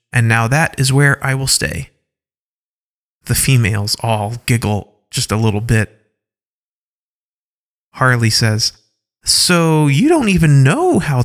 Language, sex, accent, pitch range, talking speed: English, male, American, 110-155 Hz, 130 wpm